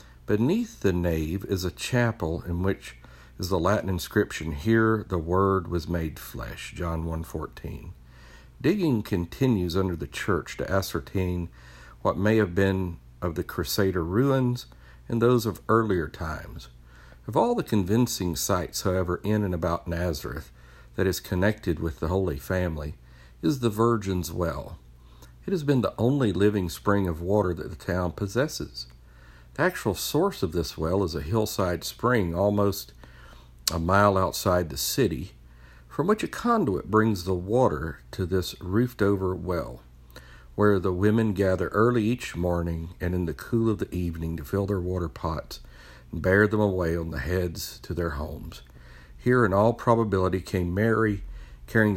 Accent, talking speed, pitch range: American, 160 wpm, 75-105 Hz